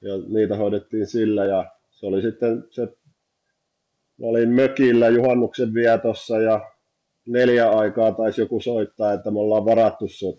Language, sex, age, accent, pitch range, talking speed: Finnish, male, 30-49, native, 105-120 Hz, 140 wpm